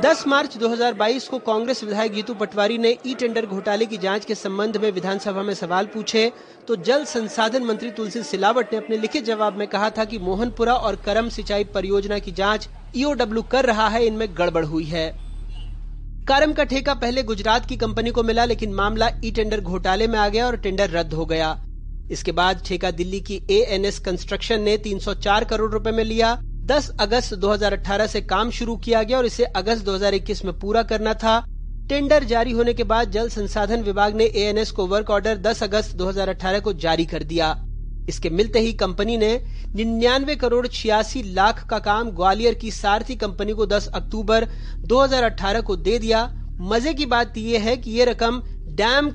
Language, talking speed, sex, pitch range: Hindi, 185 wpm, male, 200-230 Hz